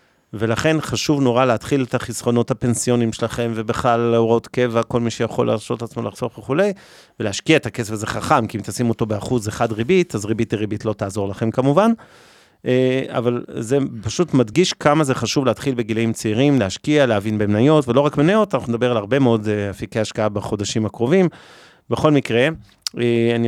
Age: 40-59